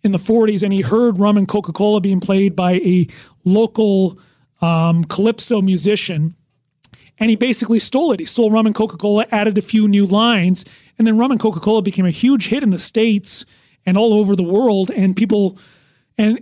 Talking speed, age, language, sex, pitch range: 190 wpm, 30-49, English, male, 185-220 Hz